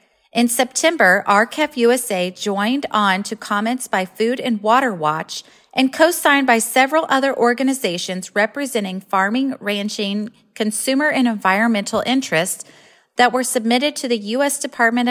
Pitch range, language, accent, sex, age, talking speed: 195-255 Hz, English, American, female, 30-49, 130 wpm